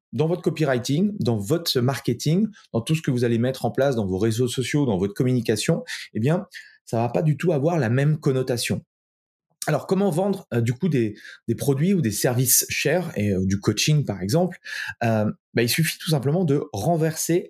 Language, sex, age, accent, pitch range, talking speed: French, male, 30-49, French, 115-160 Hz, 205 wpm